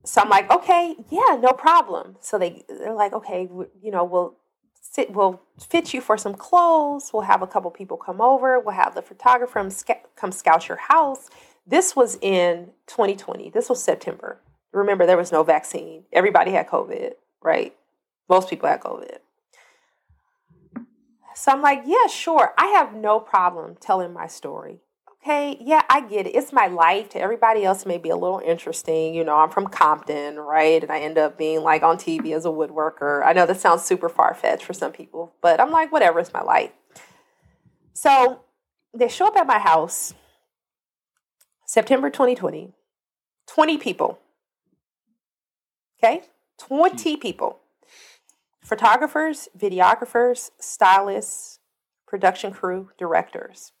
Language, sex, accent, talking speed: English, female, American, 155 wpm